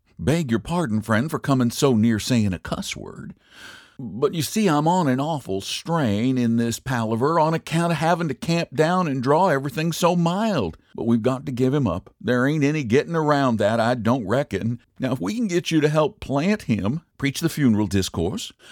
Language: English